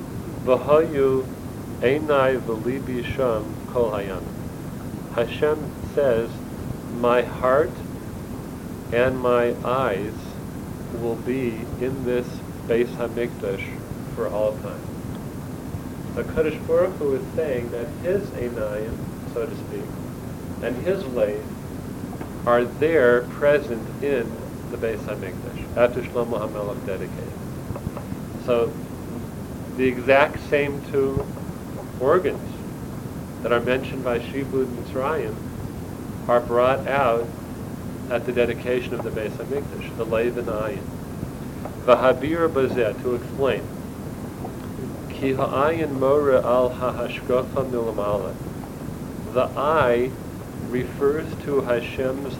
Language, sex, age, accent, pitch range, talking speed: English, male, 40-59, American, 115-130 Hz, 95 wpm